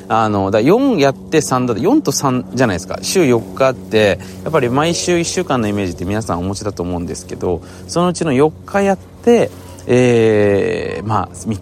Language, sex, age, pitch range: Japanese, male, 20-39, 95-150 Hz